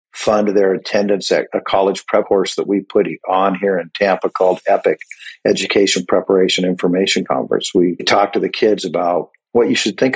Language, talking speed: English, 185 wpm